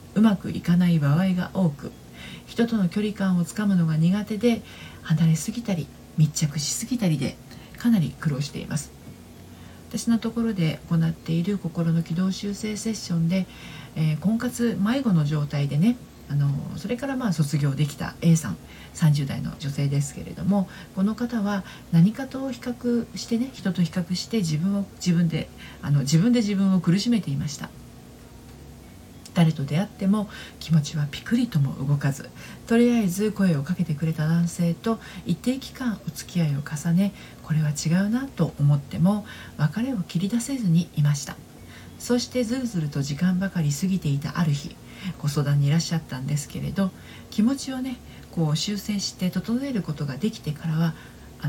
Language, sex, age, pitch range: Japanese, female, 40-59, 150-210 Hz